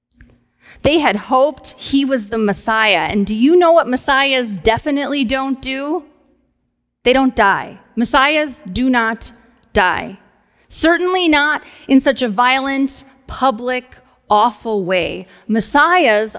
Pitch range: 215-295 Hz